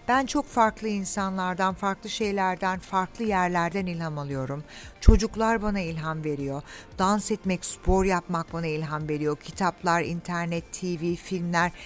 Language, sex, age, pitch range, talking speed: Turkish, female, 60-79, 165-240 Hz, 125 wpm